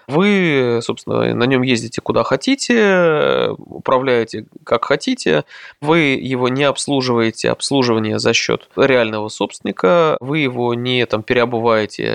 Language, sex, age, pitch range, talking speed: Russian, male, 20-39, 115-160 Hz, 115 wpm